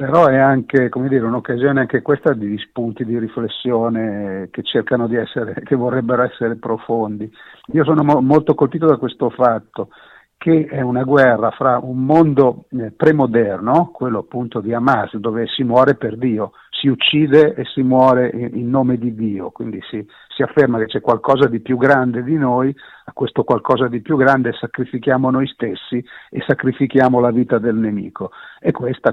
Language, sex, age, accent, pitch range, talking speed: Italian, male, 50-69, native, 120-140 Hz, 170 wpm